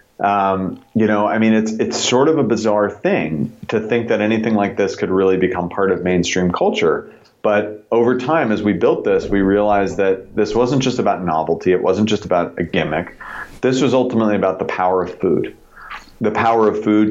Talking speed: 205 wpm